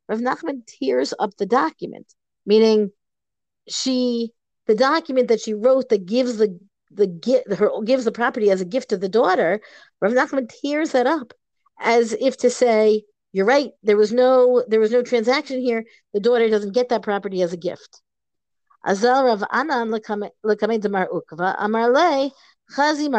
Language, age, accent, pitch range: English, 50-69, American, 205-265 Hz